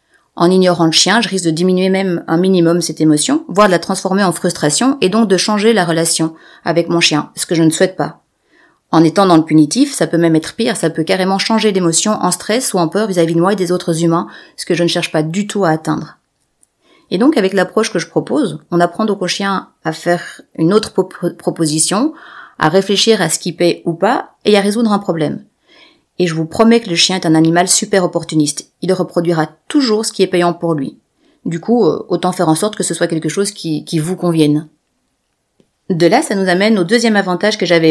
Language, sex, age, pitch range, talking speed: French, female, 30-49, 170-210 Hz, 235 wpm